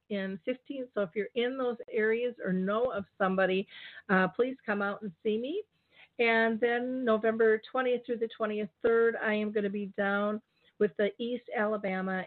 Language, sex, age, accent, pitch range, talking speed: English, female, 50-69, American, 190-225 Hz, 175 wpm